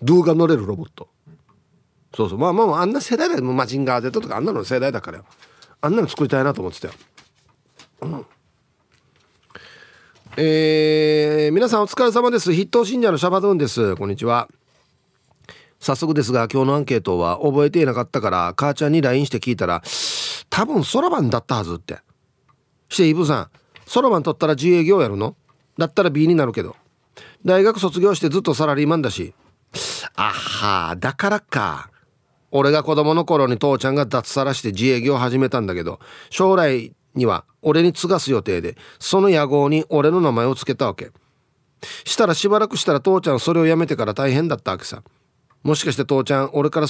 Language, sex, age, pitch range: Japanese, male, 40-59, 130-165 Hz